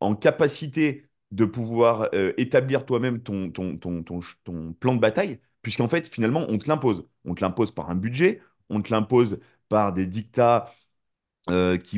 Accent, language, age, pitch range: French, French, 30-49, 95-125 Hz